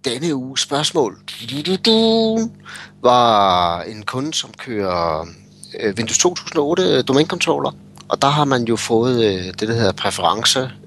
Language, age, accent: Danish, 30-49, native